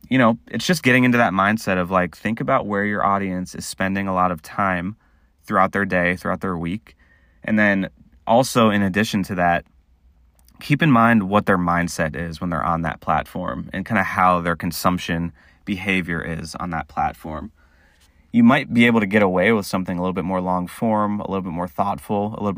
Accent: American